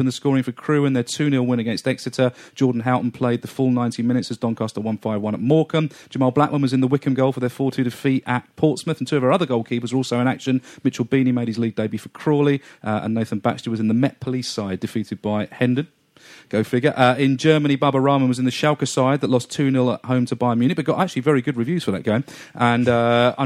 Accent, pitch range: British, 110-135 Hz